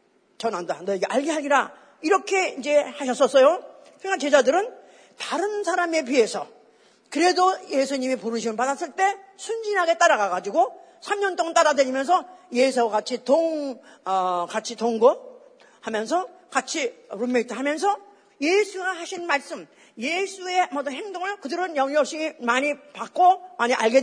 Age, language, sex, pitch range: 40-59, Korean, female, 240-345 Hz